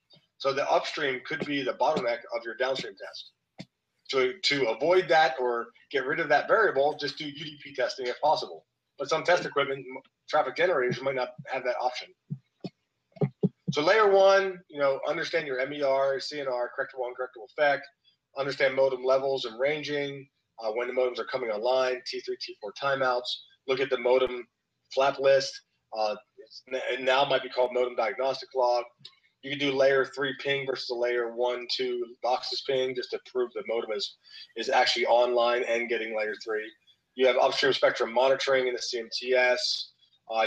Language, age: English, 30-49